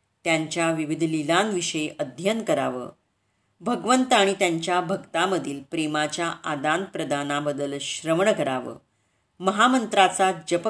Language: Marathi